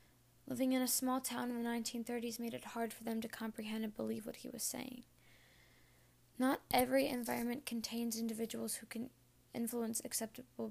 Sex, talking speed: female, 170 wpm